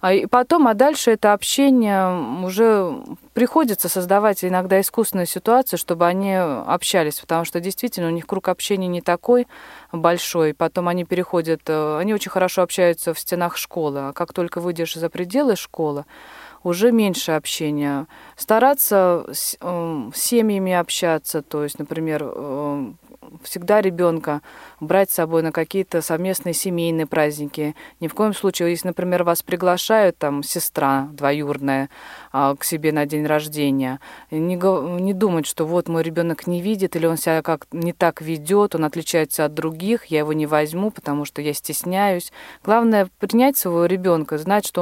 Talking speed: 150 wpm